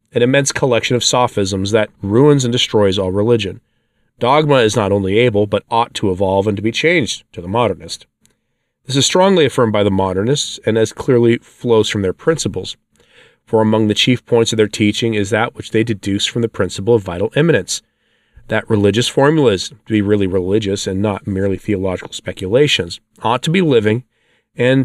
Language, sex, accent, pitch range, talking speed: English, male, American, 100-125 Hz, 185 wpm